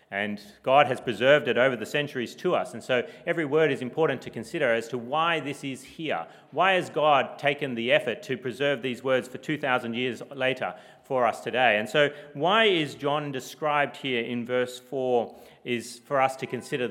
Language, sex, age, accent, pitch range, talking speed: English, male, 30-49, Australian, 120-145 Hz, 200 wpm